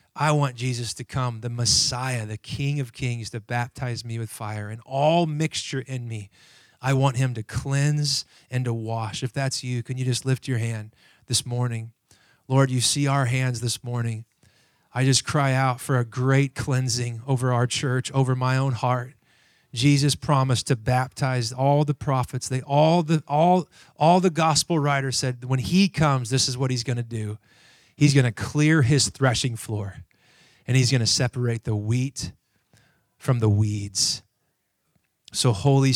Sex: male